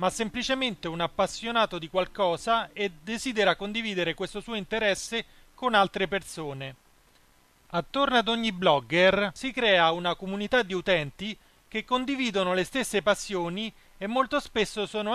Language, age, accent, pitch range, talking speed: Italian, 30-49, native, 175-230 Hz, 135 wpm